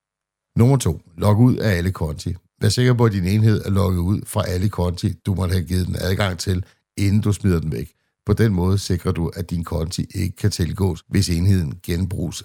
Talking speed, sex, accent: 215 wpm, male, native